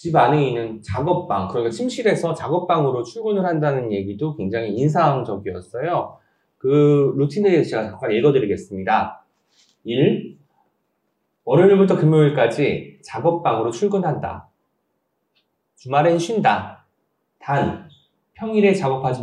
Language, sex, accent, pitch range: Korean, male, native, 140-200 Hz